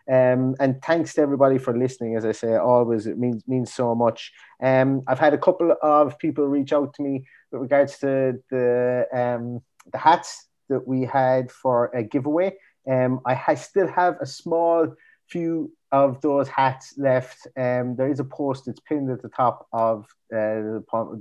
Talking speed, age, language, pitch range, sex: 180 wpm, 30-49, English, 110-135 Hz, male